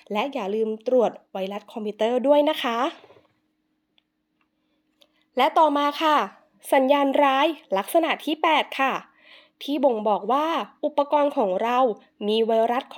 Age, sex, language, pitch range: 20-39, female, English, 235-295 Hz